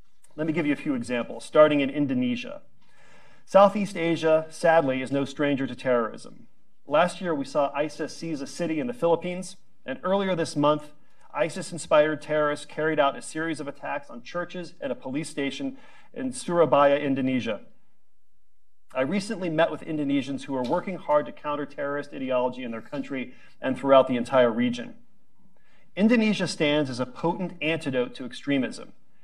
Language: English